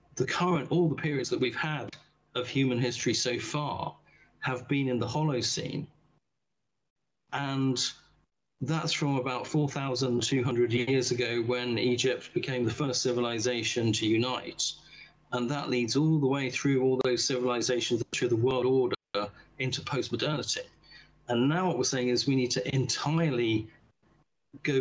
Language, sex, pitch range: English, male, 125-150 Hz